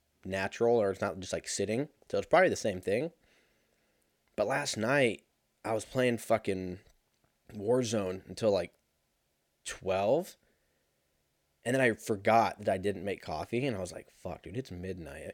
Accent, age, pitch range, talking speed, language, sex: American, 20-39, 100-130 Hz, 160 wpm, English, male